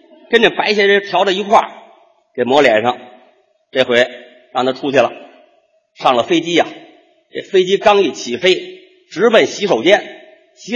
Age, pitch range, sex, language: 50-69, 200-330 Hz, male, Chinese